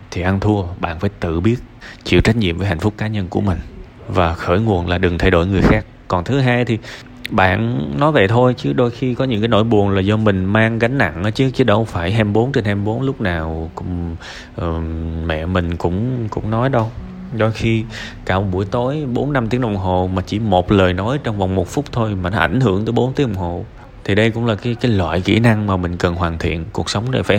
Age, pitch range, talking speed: 20-39, 90-115 Hz, 245 wpm